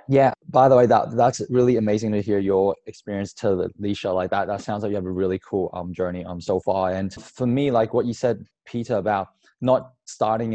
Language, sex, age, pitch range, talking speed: English, male, 20-39, 100-125 Hz, 230 wpm